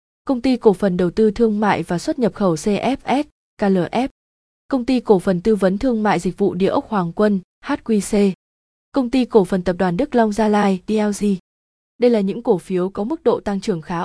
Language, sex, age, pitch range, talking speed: Vietnamese, female, 20-39, 195-230 Hz, 220 wpm